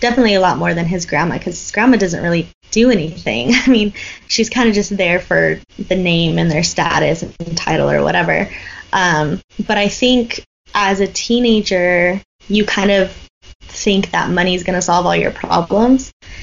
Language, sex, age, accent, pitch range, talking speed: English, female, 20-39, American, 175-200 Hz, 185 wpm